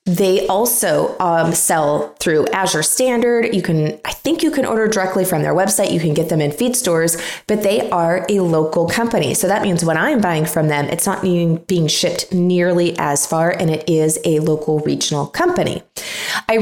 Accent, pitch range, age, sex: American, 160-195 Hz, 20-39, female